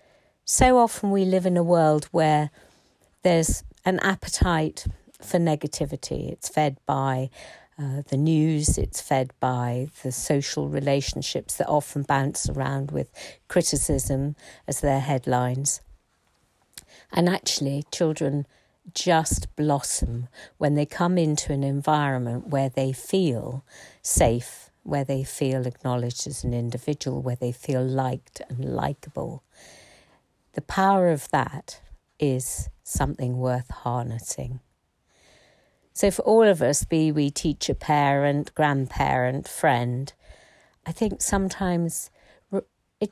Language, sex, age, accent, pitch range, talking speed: English, female, 50-69, British, 130-165 Hz, 120 wpm